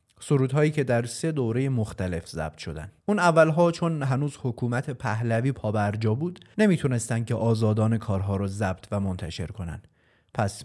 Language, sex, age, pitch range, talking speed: Persian, male, 30-49, 105-140 Hz, 145 wpm